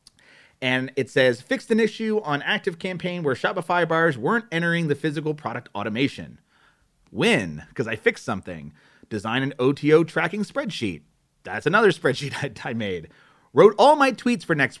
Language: English